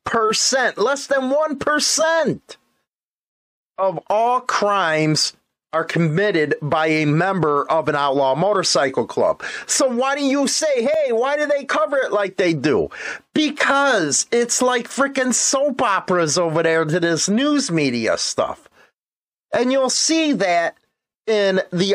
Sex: male